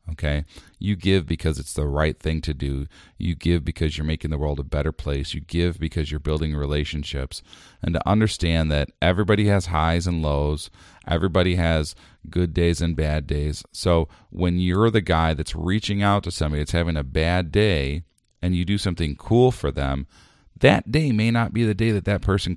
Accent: American